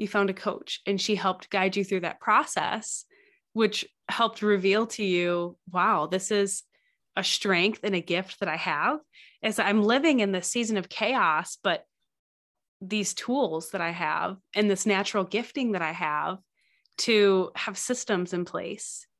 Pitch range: 190-230 Hz